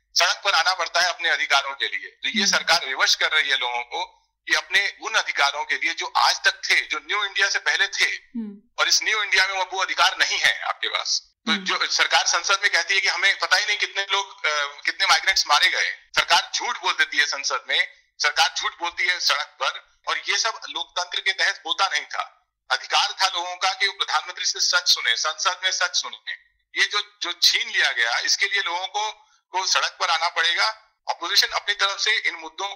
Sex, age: male, 40-59